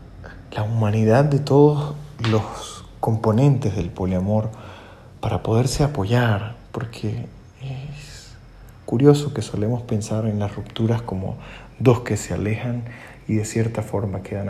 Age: 30-49